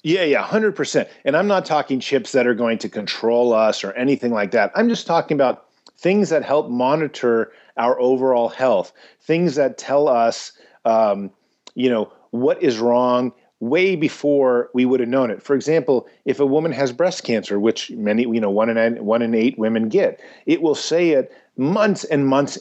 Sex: male